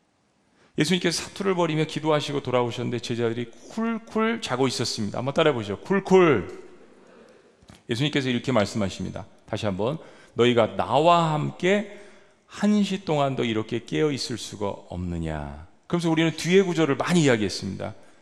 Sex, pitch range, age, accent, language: male, 115-185 Hz, 40-59, native, Korean